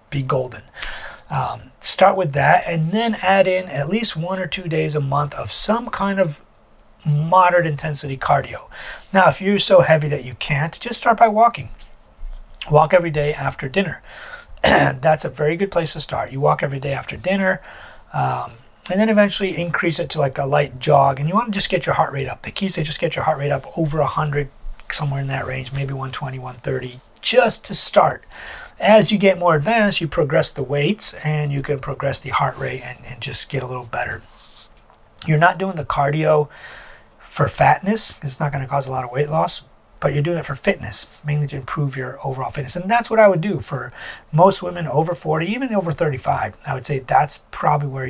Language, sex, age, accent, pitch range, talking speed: English, male, 30-49, American, 135-175 Hz, 215 wpm